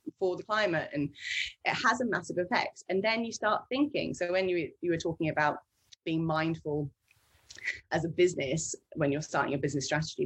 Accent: British